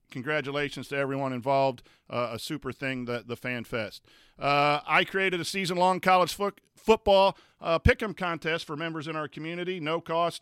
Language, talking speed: English, 175 wpm